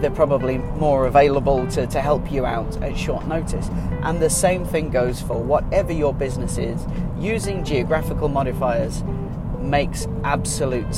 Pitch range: 135-165 Hz